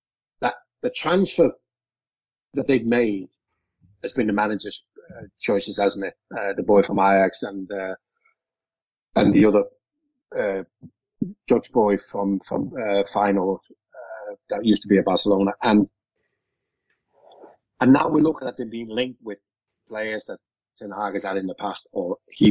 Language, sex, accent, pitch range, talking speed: English, male, British, 105-170 Hz, 155 wpm